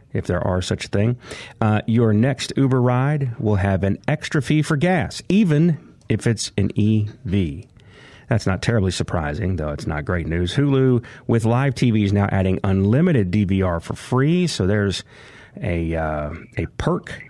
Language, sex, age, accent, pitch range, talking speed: English, male, 40-59, American, 95-120 Hz, 170 wpm